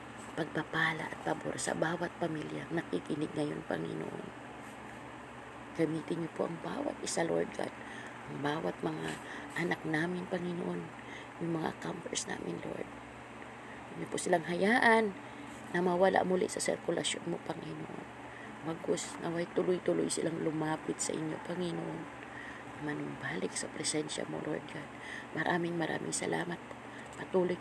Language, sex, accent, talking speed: Filipino, female, native, 125 wpm